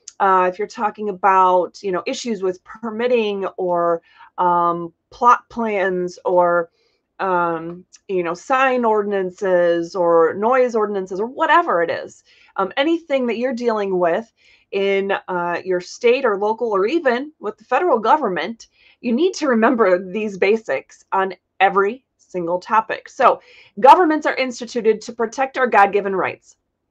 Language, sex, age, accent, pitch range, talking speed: English, female, 30-49, American, 185-245 Hz, 145 wpm